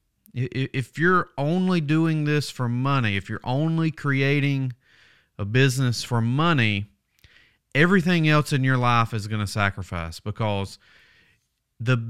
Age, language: 30-49, English